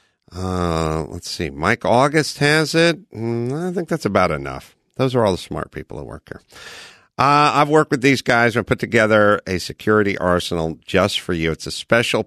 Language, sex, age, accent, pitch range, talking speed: English, male, 50-69, American, 95-140 Hz, 195 wpm